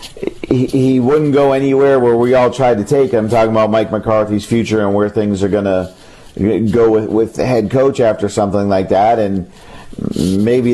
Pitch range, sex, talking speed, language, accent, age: 105-125 Hz, male, 195 wpm, English, American, 40-59